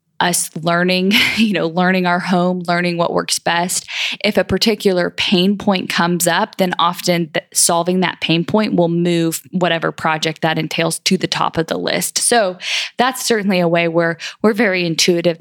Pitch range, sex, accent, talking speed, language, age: 165-195 Hz, female, American, 175 wpm, English, 10-29